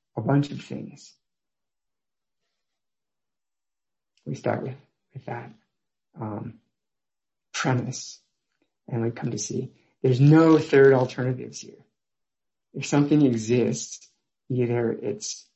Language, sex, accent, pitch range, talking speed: English, male, American, 120-140 Hz, 100 wpm